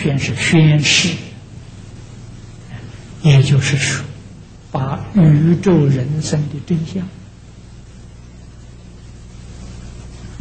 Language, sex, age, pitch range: Chinese, male, 60-79, 105-155 Hz